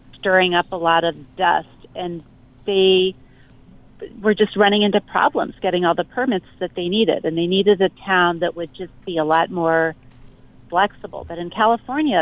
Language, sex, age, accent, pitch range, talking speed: English, female, 40-59, American, 170-200 Hz, 175 wpm